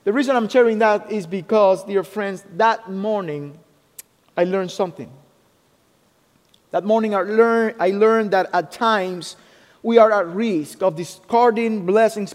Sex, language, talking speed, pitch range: male, English, 140 wpm, 170-225 Hz